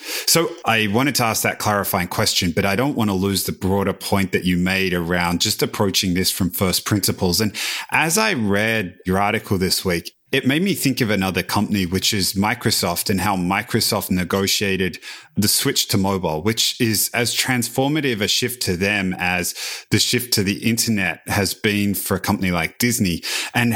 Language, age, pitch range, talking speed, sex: English, 30-49, 95-115 Hz, 190 wpm, male